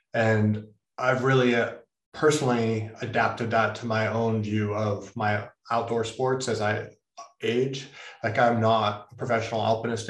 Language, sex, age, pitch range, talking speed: English, male, 20-39, 115-135 Hz, 145 wpm